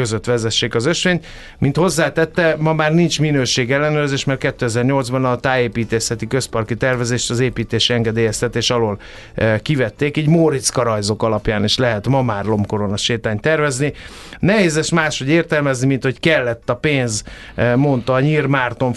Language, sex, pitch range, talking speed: Hungarian, male, 120-145 Hz, 145 wpm